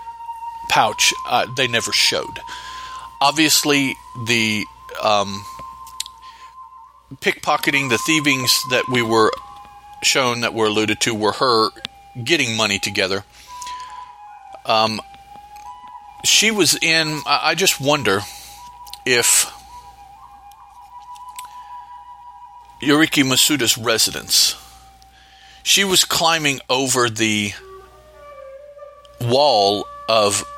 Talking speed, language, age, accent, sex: 85 wpm, English, 40-59, American, male